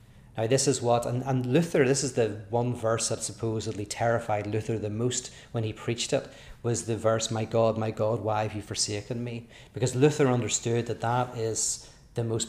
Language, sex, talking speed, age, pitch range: English, male, 200 wpm, 30-49, 110-130 Hz